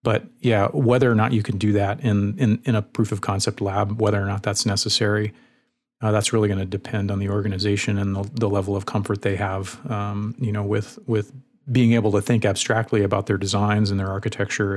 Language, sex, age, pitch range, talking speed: English, male, 40-59, 100-120 Hz, 225 wpm